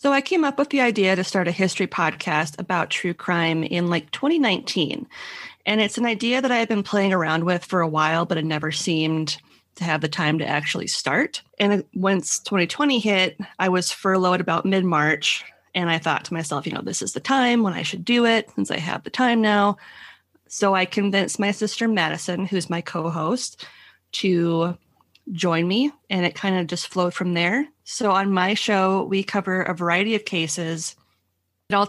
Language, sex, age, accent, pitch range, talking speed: English, female, 30-49, American, 165-205 Hz, 200 wpm